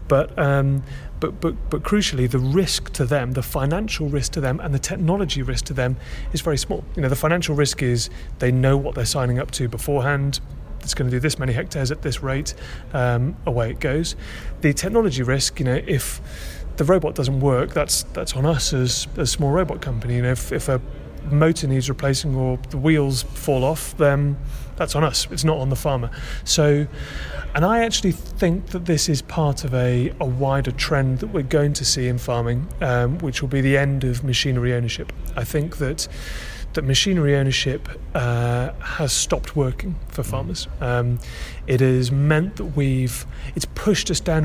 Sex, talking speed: male, 195 wpm